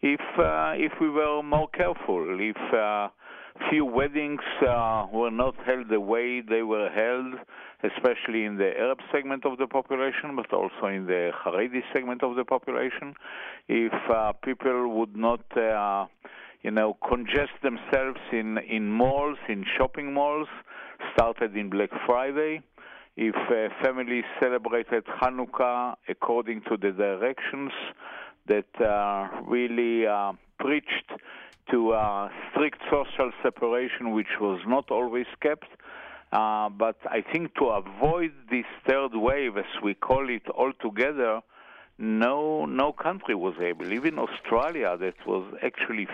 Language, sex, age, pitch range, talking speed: English, male, 50-69, 105-130 Hz, 135 wpm